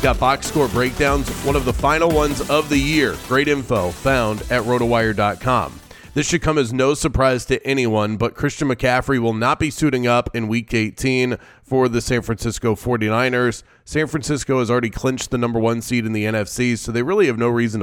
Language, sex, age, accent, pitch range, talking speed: English, male, 30-49, American, 115-135 Hz, 200 wpm